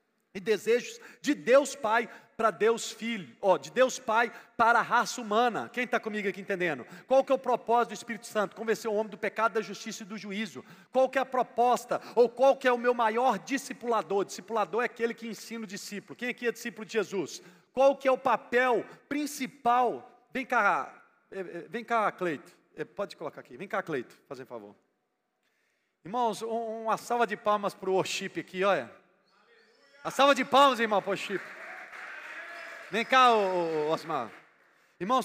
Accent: Brazilian